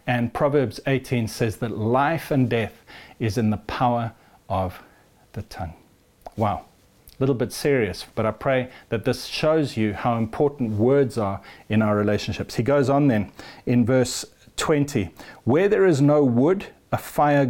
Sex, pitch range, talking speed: male, 115-145 Hz, 165 wpm